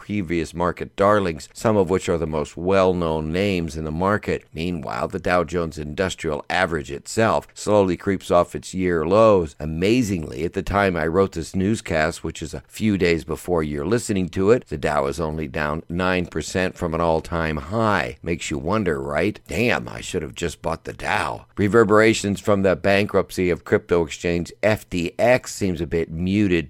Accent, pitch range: American, 80-95 Hz